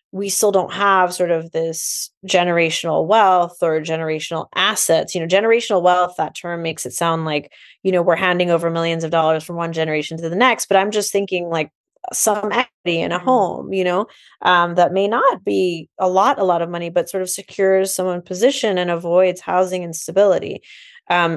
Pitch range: 165-190 Hz